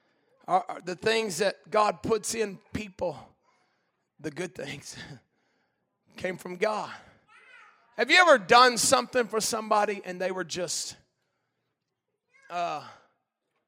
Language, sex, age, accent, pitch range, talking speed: English, male, 40-59, American, 185-235 Hz, 110 wpm